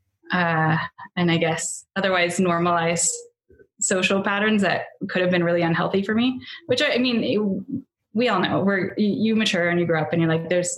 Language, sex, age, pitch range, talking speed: English, female, 20-39, 165-195 Hz, 195 wpm